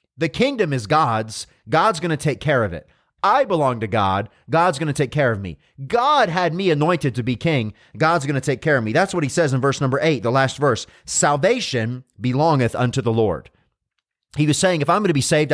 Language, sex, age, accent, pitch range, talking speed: English, male, 30-49, American, 120-165 Hz, 220 wpm